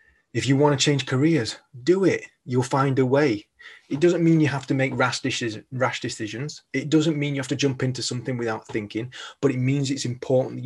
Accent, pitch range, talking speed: British, 115-140 Hz, 215 wpm